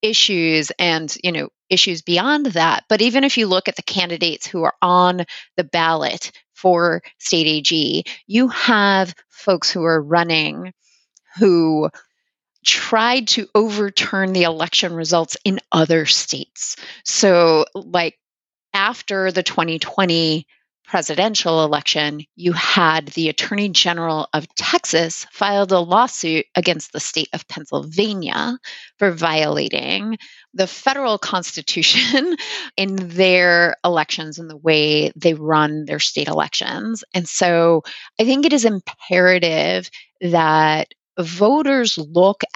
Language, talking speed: English, 125 wpm